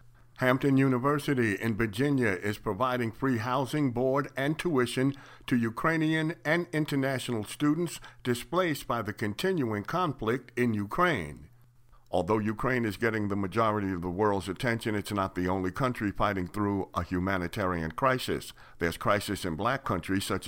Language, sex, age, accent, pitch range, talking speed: English, male, 60-79, American, 95-135 Hz, 145 wpm